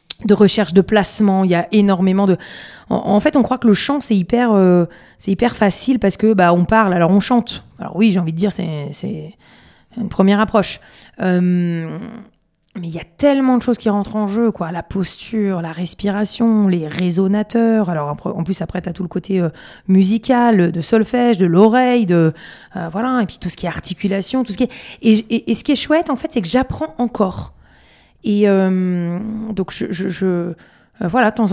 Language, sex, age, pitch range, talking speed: French, female, 20-39, 185-225 Hz, 215 wpm